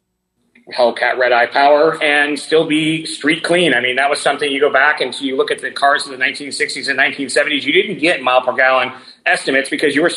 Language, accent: English, American